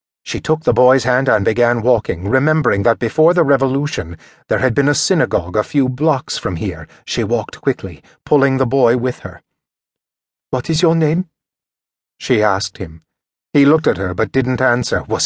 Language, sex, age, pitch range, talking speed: English, male, 30-49, 105-140 Hz, 180 wpm